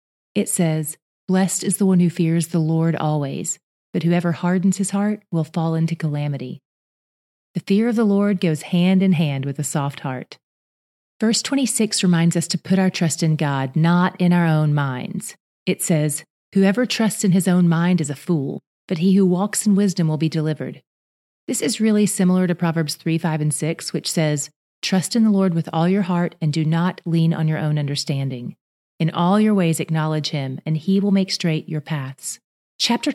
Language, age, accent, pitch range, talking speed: English, 30-49, American, 155-195 Hz, 200 wpm